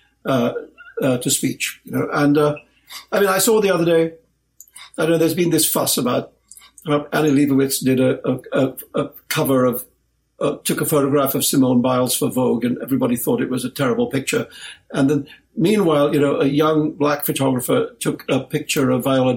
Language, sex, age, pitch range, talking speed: English, male, 60-79, 140-185 Hz, 195 wpm